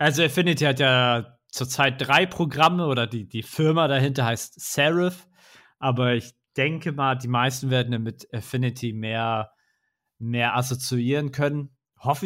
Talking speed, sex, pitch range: 135 wpm, male, 120-150 Hz